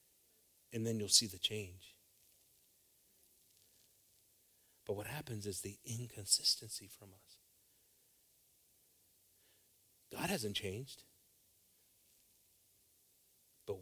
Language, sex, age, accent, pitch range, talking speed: English, male, 40-59, American, 95-110 Hz, 80 wpm